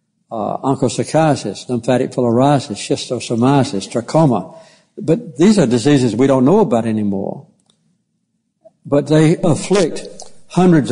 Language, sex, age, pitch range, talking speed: English, male, 60-79, 110-150 Hz, 105 wpm